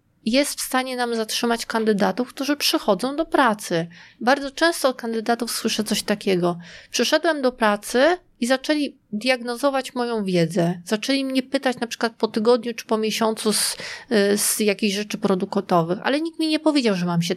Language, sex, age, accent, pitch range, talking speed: Polish, female, 30-49, native, 195-270 Hz, 165 wpm